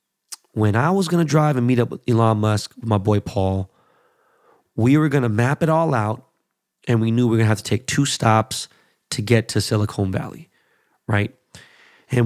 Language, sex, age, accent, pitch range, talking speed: English, male, 30-49, American, 105-125 Hz, 200 wpm